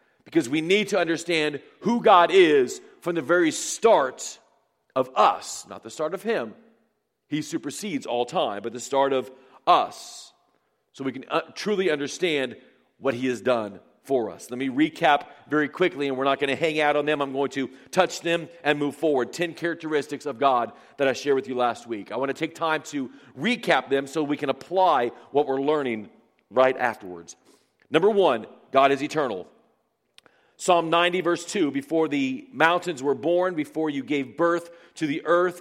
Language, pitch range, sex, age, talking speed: English, 140-175 Hz, male, 40-59, 185 wpm